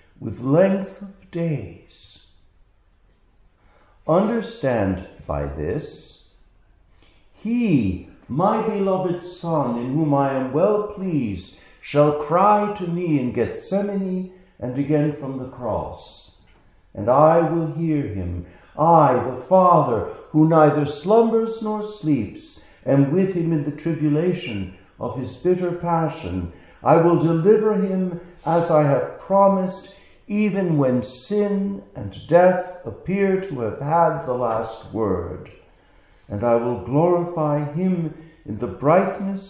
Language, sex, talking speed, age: English, male, 120 wpm, 60-79